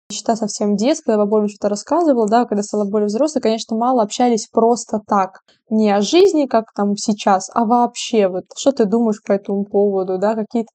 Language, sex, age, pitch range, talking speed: Russian, female, 20-39, 205-235 Hz, 185 wpm